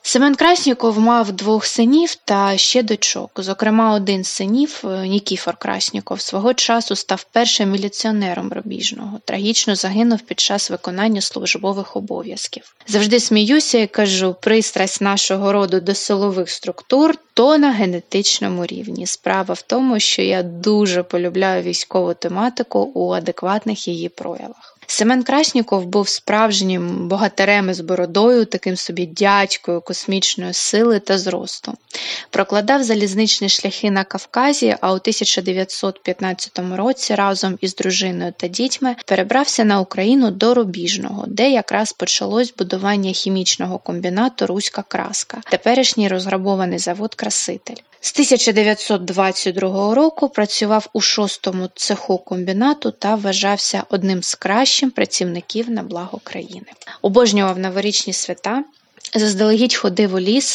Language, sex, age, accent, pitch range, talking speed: Ukrainian, female, 20-39, native, 190-230 Hz, 125 wpm